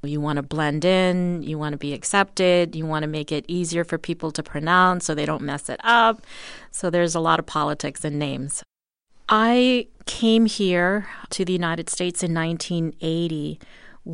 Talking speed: 185 wpm